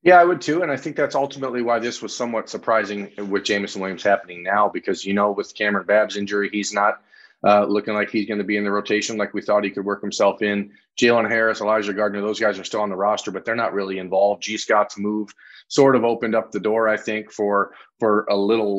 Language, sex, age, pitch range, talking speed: English, male, 30-49, 100-120 Hz, 245 wpm